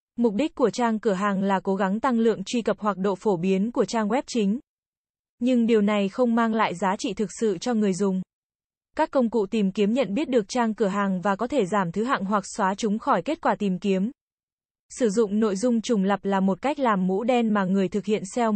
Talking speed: 245 wpm